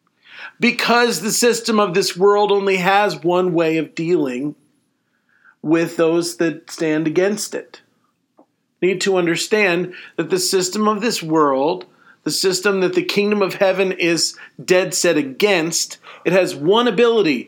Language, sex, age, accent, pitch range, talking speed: English, male, 40-59, American, 170-210 Hz, 150 wpm